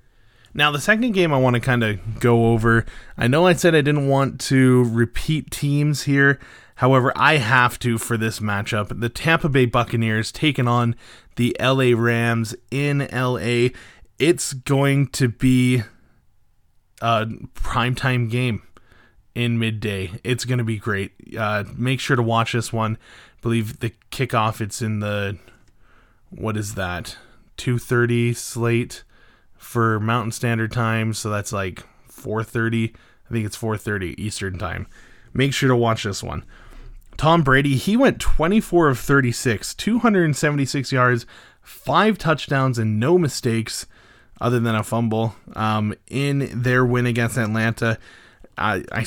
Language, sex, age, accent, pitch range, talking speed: English, male, 20-39, American, 110-130 Hz, 145 wpm